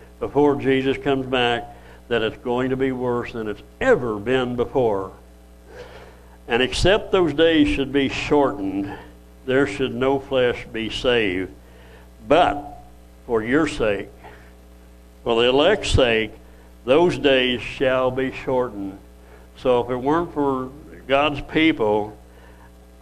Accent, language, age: American, English, 60-79